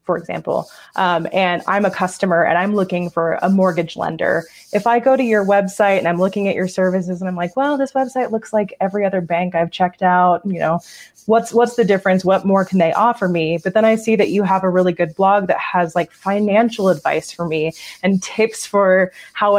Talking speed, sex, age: 225 wpm, female, 20-39